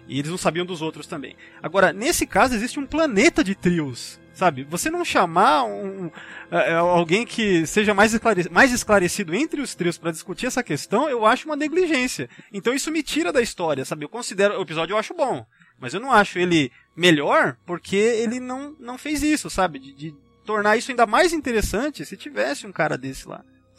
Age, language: 20-39, Portuguese